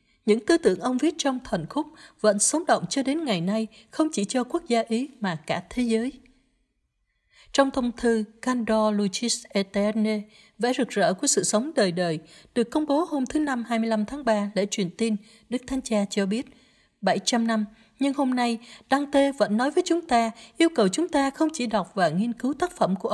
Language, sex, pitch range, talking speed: Vietnamese, female, 200-260 Hz, 205 wpm